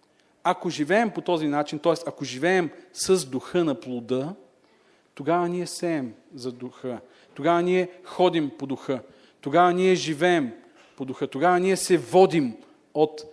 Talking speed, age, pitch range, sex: 145 wpm, 40-59, 135-180 Hz, male